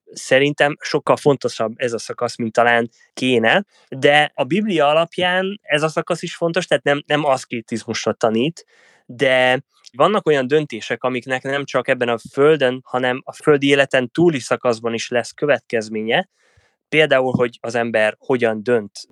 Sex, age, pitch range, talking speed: male, 20-39, 120-155 Hz, 150 wpm